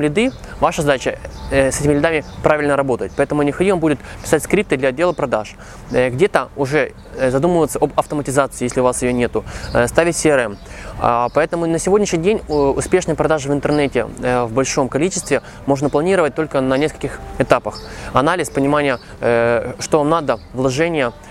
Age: 20-39